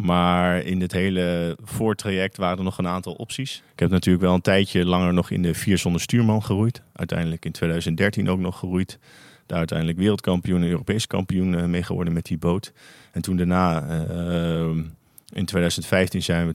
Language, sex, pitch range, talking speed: Dutch, male, 85-95 Hz, 180 wpm